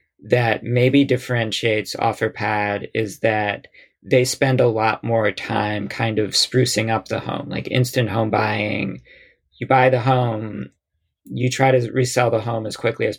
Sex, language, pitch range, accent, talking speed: male, English, 110-125 Hz, American, 160 wpm